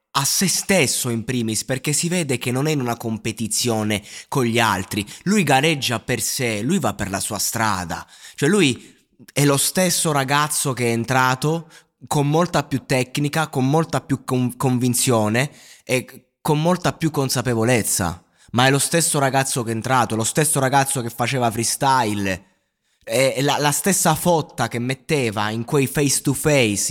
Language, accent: Italian, native